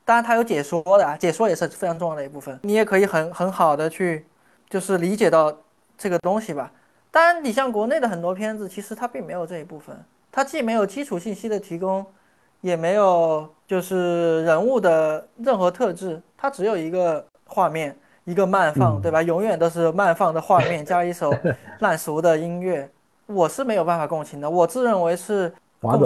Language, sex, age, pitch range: Chinese, male, 20-39, 155-205 Hz